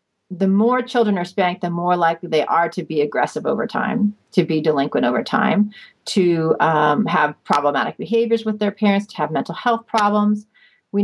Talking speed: 185 wpm